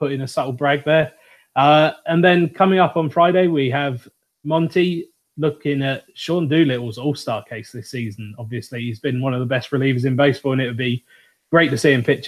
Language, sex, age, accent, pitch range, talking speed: English, male, 20-39, British, 130-155 Hz, 205 wpm